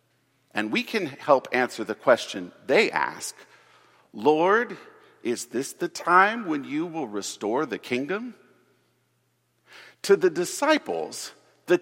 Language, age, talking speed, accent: English, 50-69, 120 wpm, American